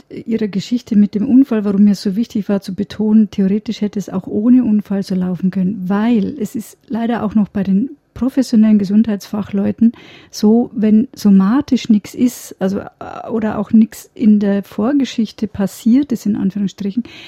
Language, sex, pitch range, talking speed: German, female, 200-230 Hz, 165 wpm